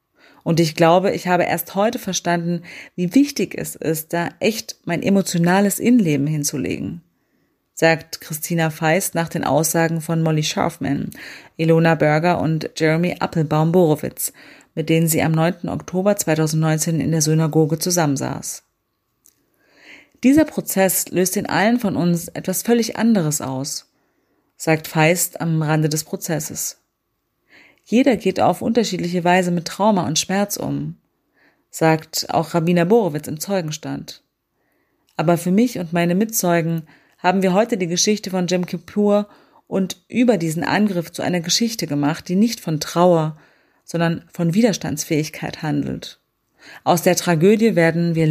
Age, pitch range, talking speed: 30-49, 160-190 Hz, 140 wpm